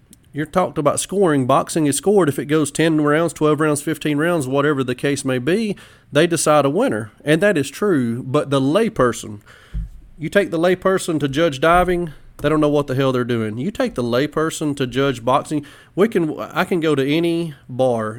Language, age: English, 30-49